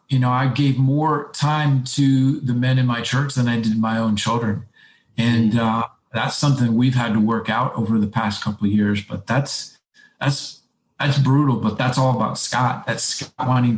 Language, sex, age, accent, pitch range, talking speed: English, male, 40-59, American, 110-135 Hz, 200 wpm